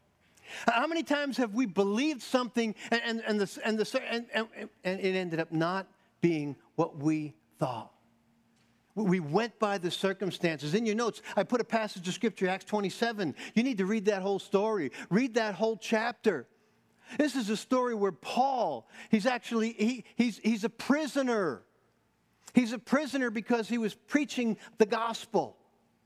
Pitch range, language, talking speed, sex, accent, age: 185-235 Hz, English, 170 wpm, male, American, 50-69